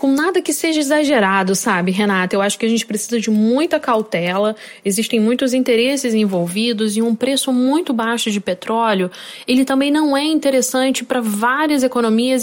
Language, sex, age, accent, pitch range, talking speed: Portuguese, female, 10-29, Brazilian, 215-280 Hz, 170 wpm